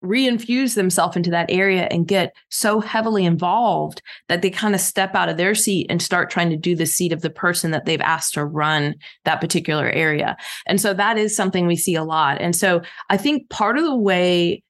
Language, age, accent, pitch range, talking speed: English, 20-39, American, 170-205 Hz, 220 wpm